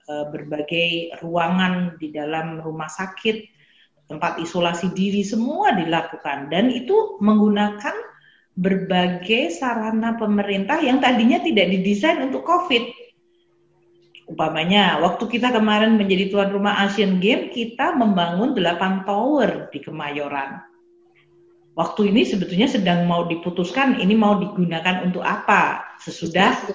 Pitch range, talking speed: 175-235 Hz, 110 wpm